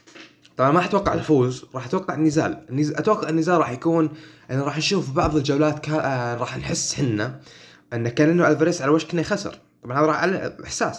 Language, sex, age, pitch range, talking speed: Arabic, male, 20-39, 120-155 Hz, 185 wpm